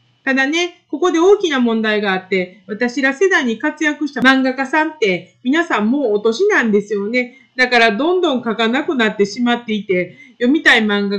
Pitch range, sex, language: 200-315 Hz, female, Japanese